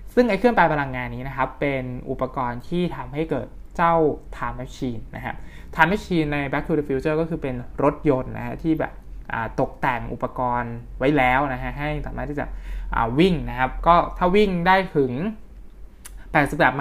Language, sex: Thai, male